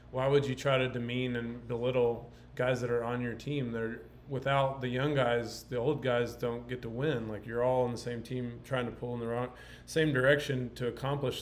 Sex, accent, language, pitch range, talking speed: male, American, English, 115-135 Hz, 225 wpm